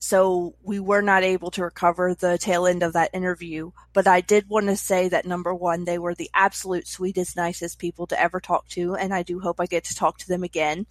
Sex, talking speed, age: female, 240 wpm, 20-39